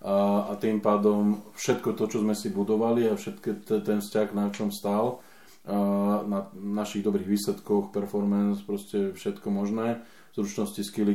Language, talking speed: Slovak, 140 wpm